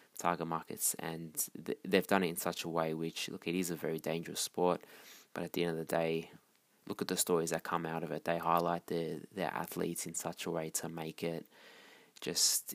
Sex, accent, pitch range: male, Australian, 80-90 Hz